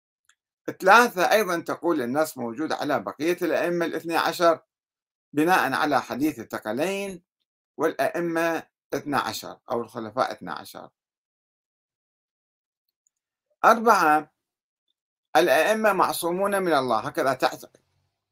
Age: 50-69